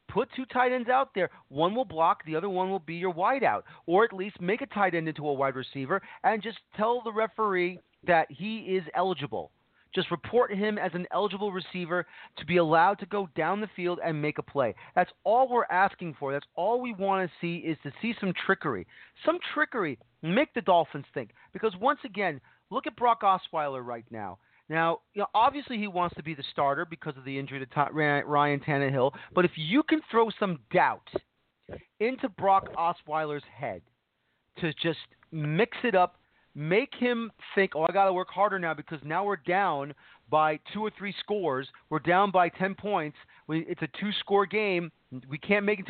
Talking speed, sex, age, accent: 195 wpm, male, 30-49, American